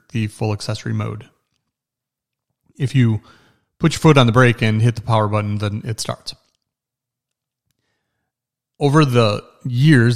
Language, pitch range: English, 110-130 Hz